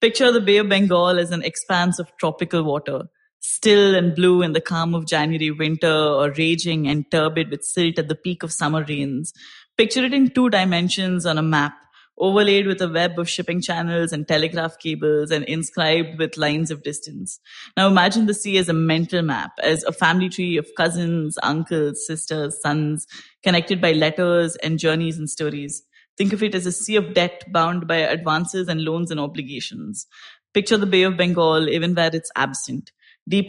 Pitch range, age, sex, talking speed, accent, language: 155-180 Hz, 20-39, female, 190 wpm, Indian, English